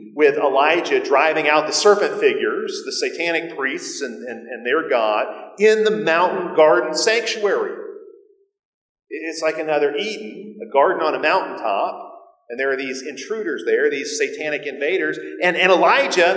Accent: American